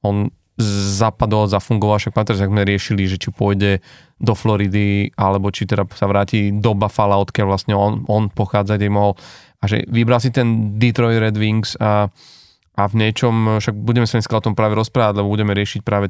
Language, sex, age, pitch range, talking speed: Slovak, male, 20-39, 105-120 Hz, 185 wpm